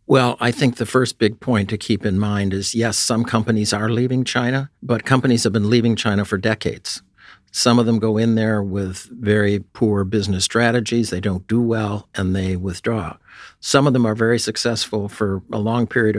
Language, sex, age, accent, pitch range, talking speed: English, male, 50-69, American, 100-115 Hz, 200 wpm